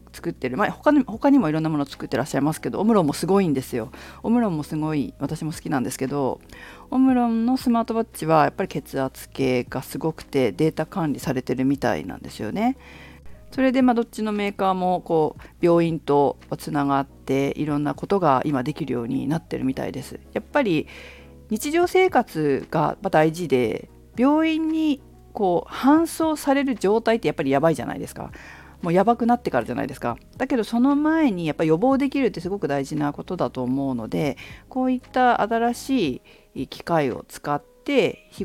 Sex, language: female, Japanese